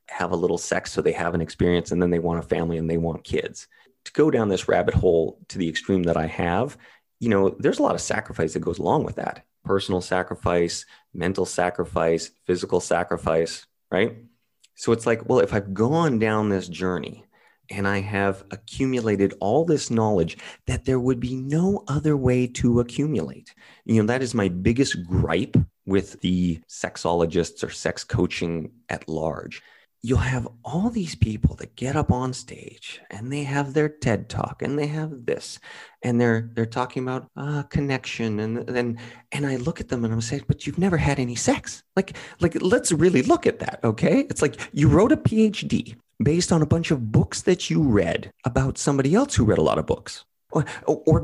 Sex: male